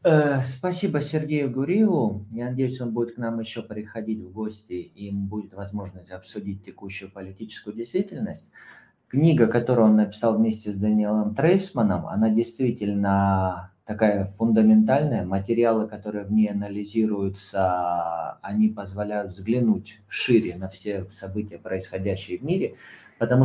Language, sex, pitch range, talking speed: Russian, male, 95-120 Hz, 125 wpm